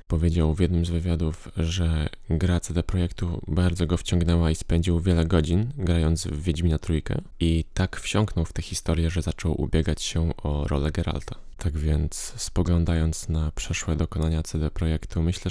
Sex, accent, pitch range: male, native, 80-90 Hz